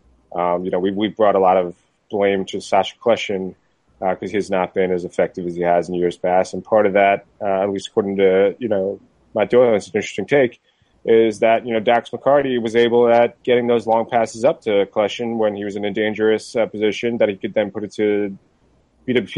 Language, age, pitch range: English, 30-49, 95-115 Hz